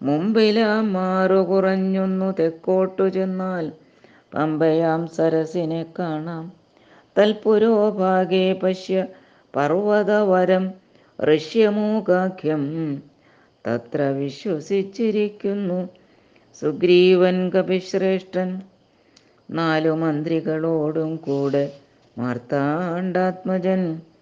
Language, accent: Malayalam, native